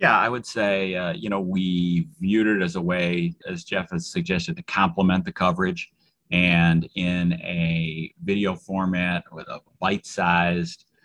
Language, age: English, 30-49